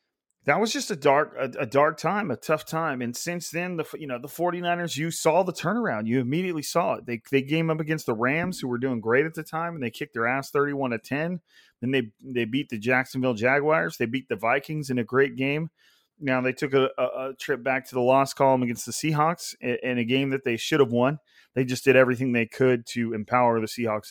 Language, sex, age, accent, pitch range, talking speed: English, male, 30-49, American, 125-155 Hz, 245 wpm